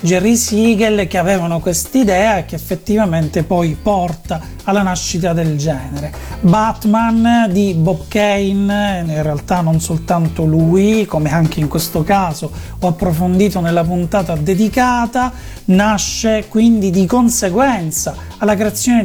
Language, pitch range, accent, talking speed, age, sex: Italian, 180-230 Hz, native, 125 wpm, 40-59, male